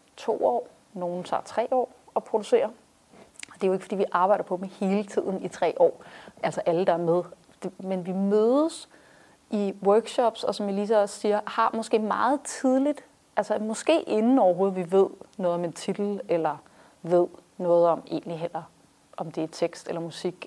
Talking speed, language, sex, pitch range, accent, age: 185 wpm, Danish, female, 180-225 Hz, native, 30-49